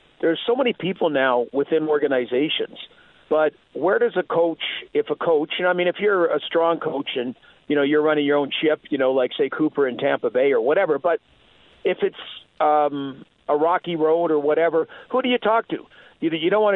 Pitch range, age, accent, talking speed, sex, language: 145-180 Hz, 50-69, American, 210 wpm, male, English